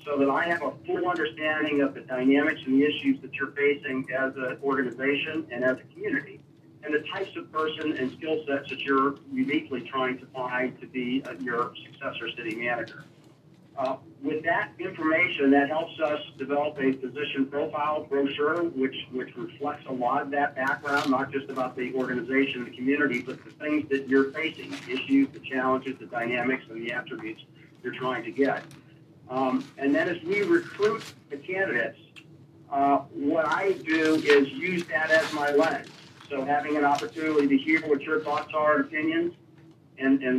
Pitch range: 135-155 Hz